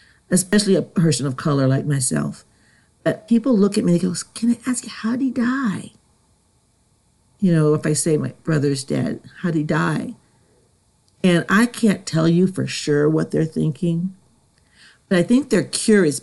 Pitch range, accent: 140-180 Hz, American